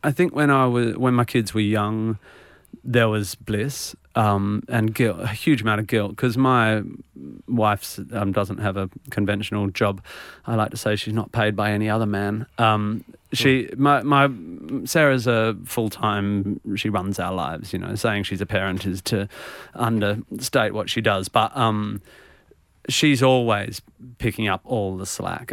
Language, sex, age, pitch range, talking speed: English, male, 30-49, 100-120 Hz, 170 wpm